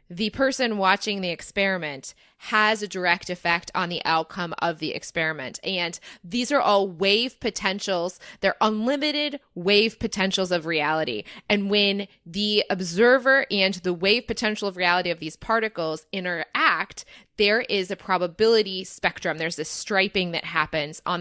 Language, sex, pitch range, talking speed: English, female, 170-215 Hz, 145 wpm